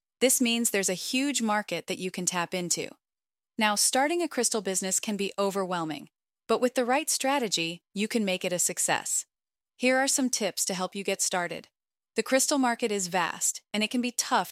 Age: 30-49